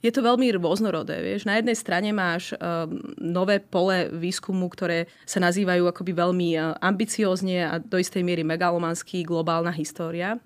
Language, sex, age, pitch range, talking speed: Slovak, female, 30-49, 165-185 Hz, 150 wpm